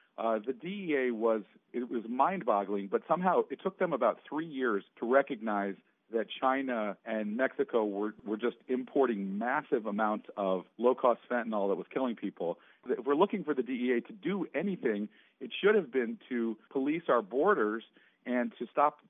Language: English